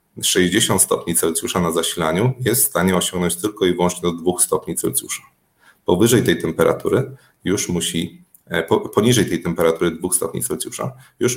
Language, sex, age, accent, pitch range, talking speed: Polish, male, 30-49, native, 85-100 Hz, 150 wpm